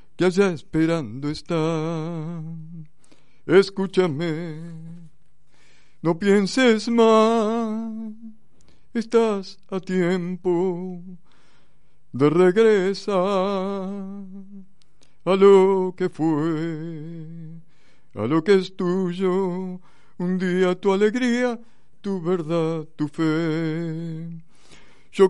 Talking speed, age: 75 wpm, 60-79